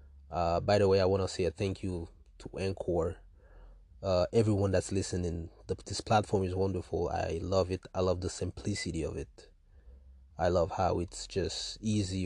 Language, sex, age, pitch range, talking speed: English, male, 20-39, 85-100 Hz, 180 wpm